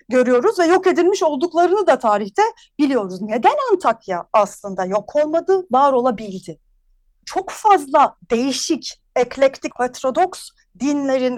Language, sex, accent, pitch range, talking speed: Turkish, female, native, 210-300 Hz, 110 wpm